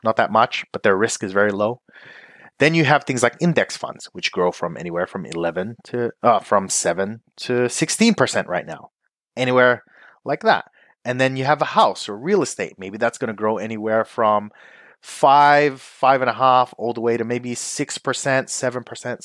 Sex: male